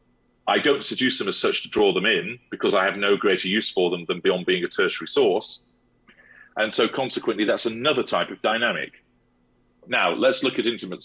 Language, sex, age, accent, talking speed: English, male, 40-59, British, 200 wpm